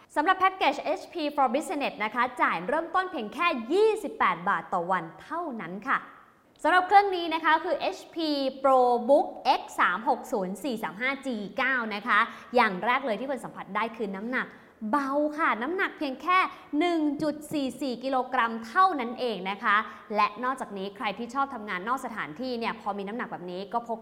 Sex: female